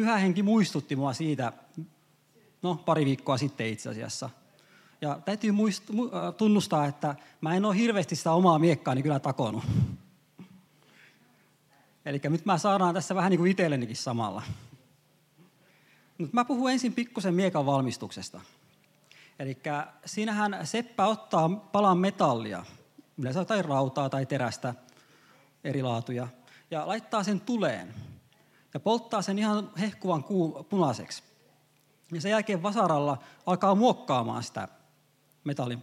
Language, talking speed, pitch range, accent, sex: Finnish, 115 wpm, 145-190 Hz, native, male